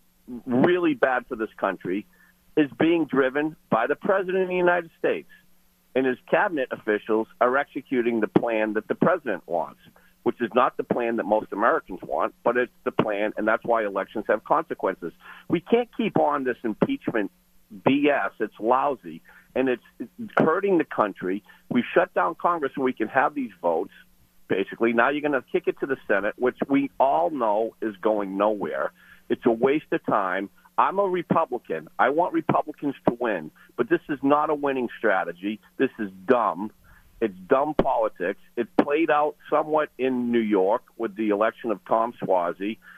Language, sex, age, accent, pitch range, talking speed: English, male, 50-69, American, 110-165 Hz, 175 wpm